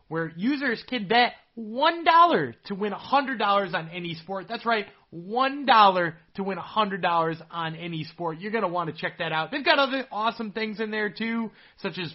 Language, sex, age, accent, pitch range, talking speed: English, male, 30-49, American, 160-220 Hz, 190 wpm